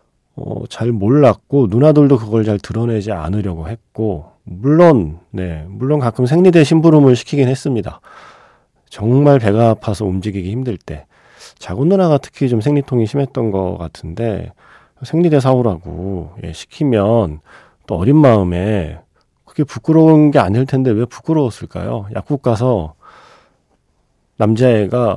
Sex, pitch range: male, 100-140 Hz